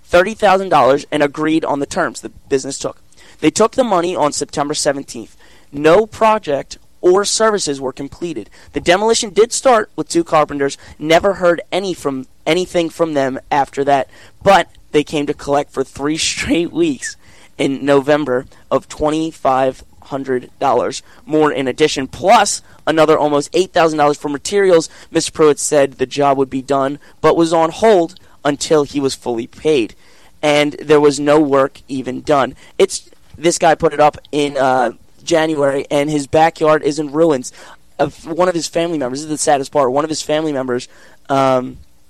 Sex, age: male, 20-39